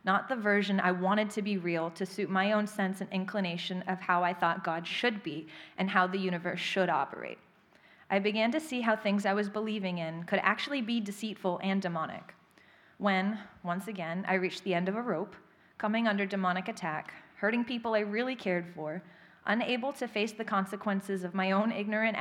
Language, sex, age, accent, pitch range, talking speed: English, female, 30-49, American, 180-220 Hz, 195 wpm